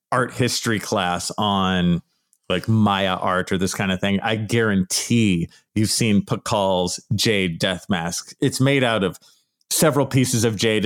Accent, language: American, English